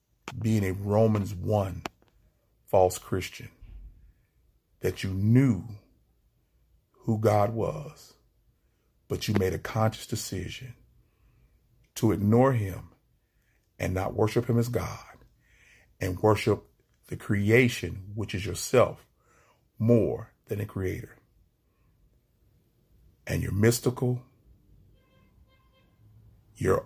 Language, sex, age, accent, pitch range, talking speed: English, male, 40-59, American, 95-120 Hz, 95 wpm